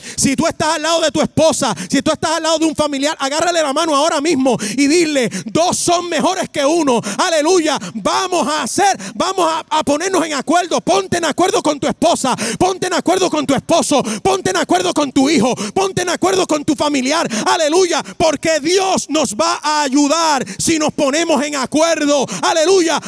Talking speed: 195 wpm